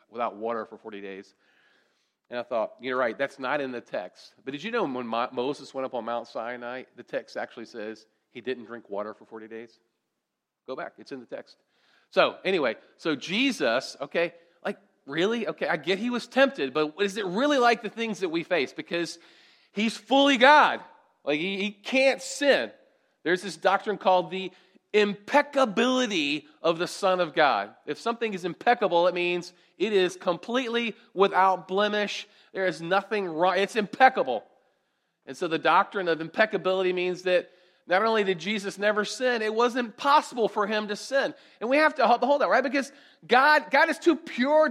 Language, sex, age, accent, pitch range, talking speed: English, male, 40-59, American, 170-255 Hz, 185 wpm